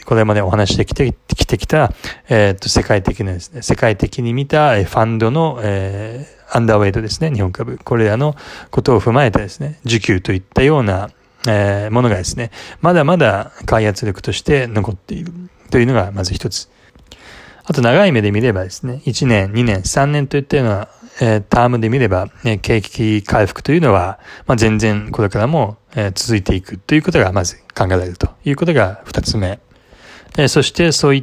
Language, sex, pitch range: Japanese, male, 100-130 Hz